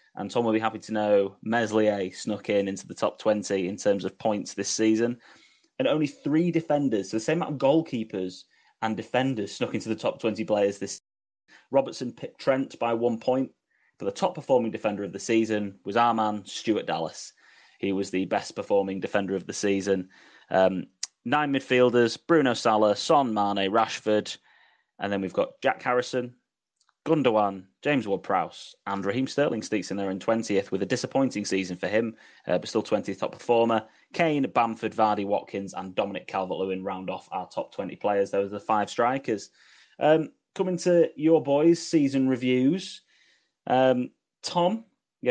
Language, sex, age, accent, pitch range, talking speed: English, male, 10-29, British, 100-130 Hz, 175 wpm